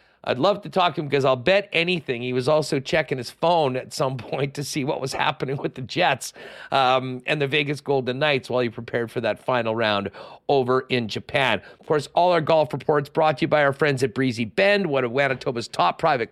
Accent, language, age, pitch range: American, English, 40-59, 125-165 Hz